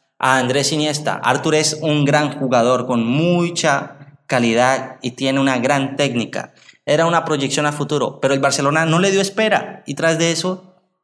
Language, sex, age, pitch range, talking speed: Spanish, male, 20-39, 130-160 Hz, 175 wpm